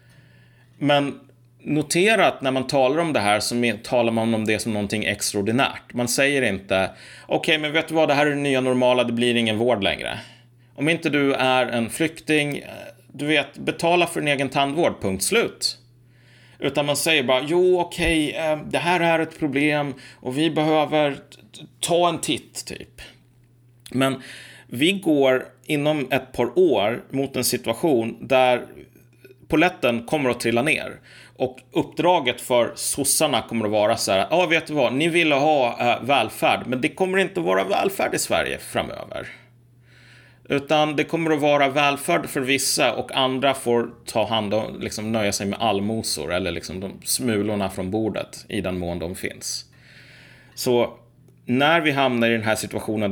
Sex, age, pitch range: male, 30-49, 115-145 Hz